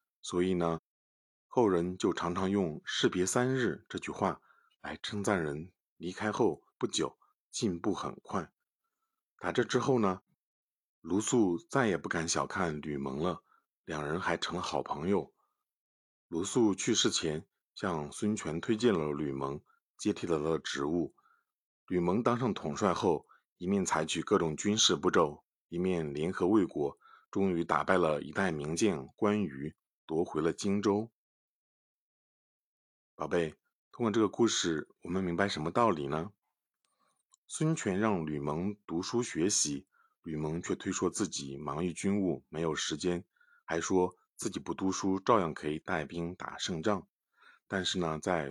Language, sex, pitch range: Chinese, male, 80-105 Hz